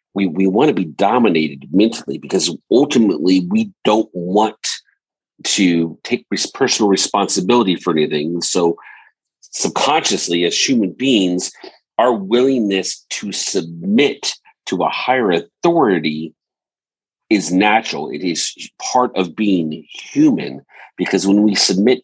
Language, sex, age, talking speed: English, male, 40-59, 115 wpm